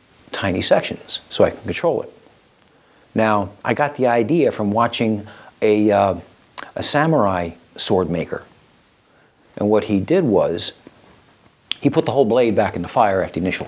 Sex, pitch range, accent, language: male, 100-120 Hz, American, English